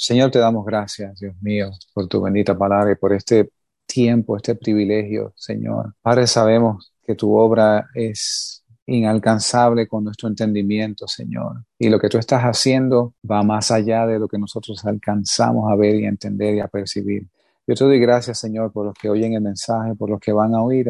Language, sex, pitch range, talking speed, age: English, male, 105-120 Hz, 190 wpm, 30-49